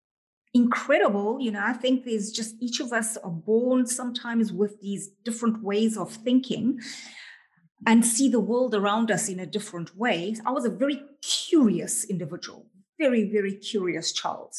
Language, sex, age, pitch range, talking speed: English, female, 30-49, 190-235 Hz, 160 wpm